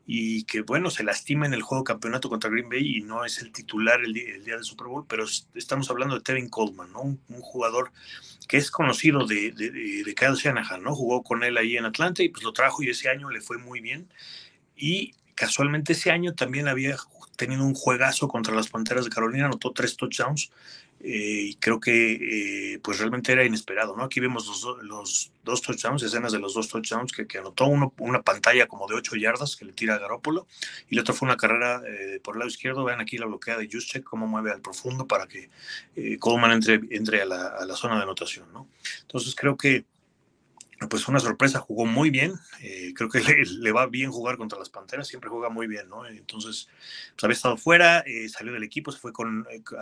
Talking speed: 225 wpm